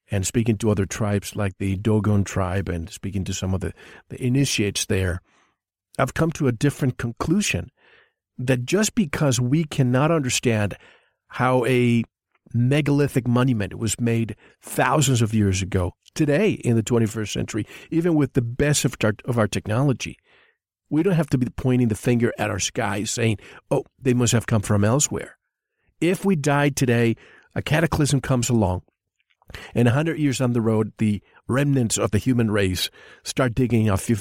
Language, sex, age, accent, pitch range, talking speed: English, male, 50-69, American, 105-140 Hz, 165 wpm